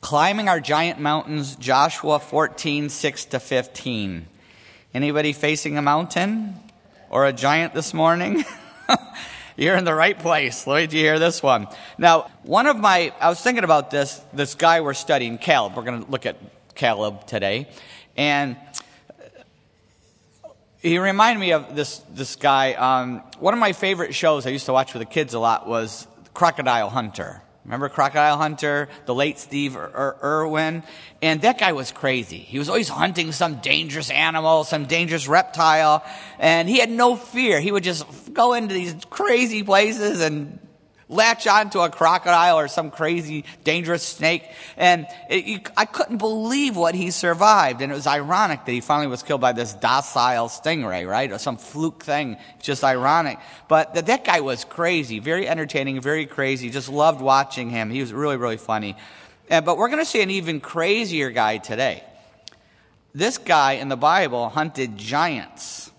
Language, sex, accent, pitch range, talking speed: English, male, American, 135-170 Hz, 170 wpm